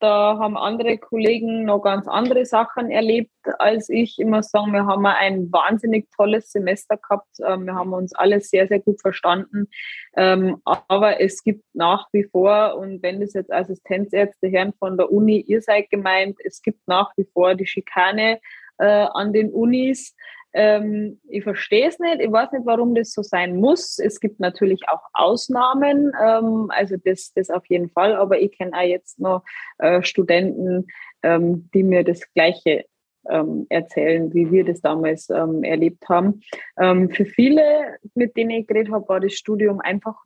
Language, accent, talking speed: German, German, 160 wpm